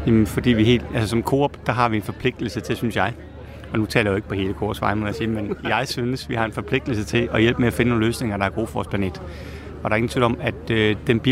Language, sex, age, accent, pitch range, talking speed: Danish, male, 30-49, native, 105-125 Hz, 280 wpm